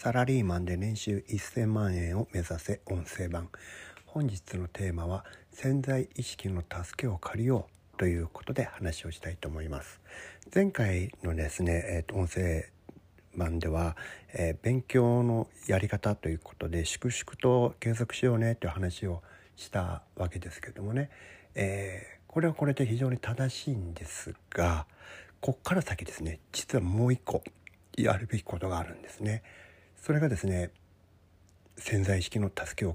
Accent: native